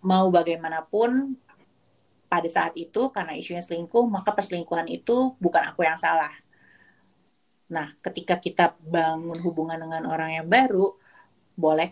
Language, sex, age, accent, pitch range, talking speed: Indonesian, female, 30-49, native, 160-185 Hz, 125 wpm